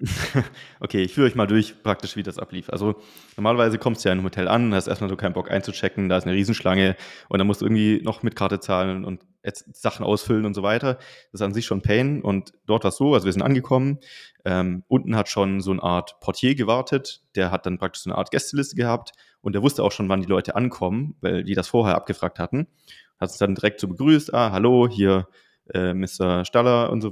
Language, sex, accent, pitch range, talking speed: German, male, German, 95-115 Hz, 240 wpm